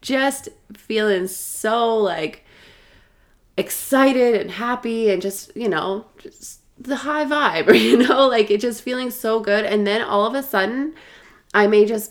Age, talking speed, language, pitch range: 20-39, 155 wpm, English, 190-230 Hz